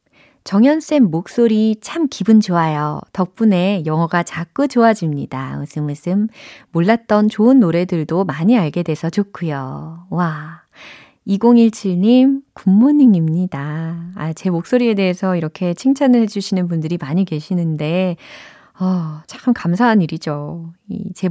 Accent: native